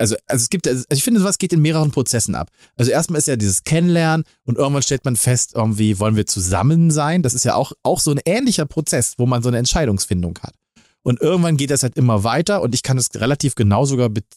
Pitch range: 115-155 Hz